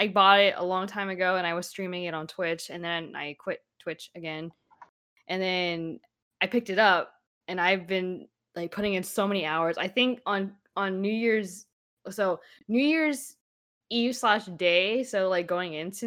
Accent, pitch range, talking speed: American, 165-205 Hz, 190 wpm